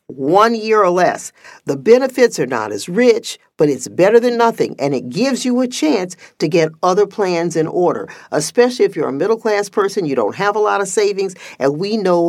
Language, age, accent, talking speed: English, 50-69, American, 210 wpm